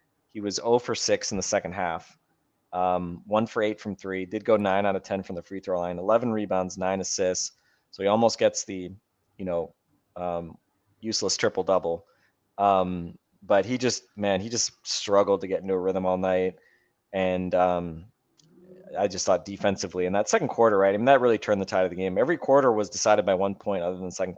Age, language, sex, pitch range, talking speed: 20-39, English, male, 90-105 Hz, 215 wpm